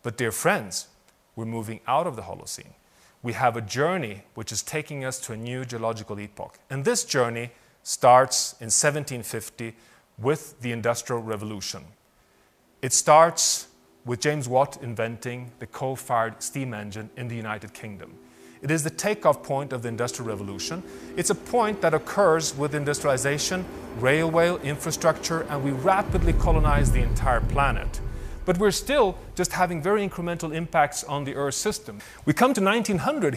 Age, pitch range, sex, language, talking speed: 30-49, 120-170 Hz, male, English, 155 wpm